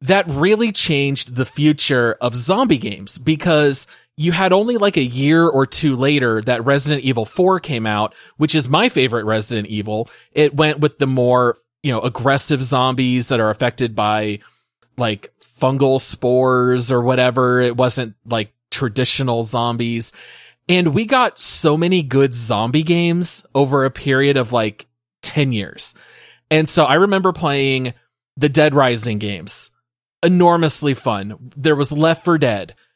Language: English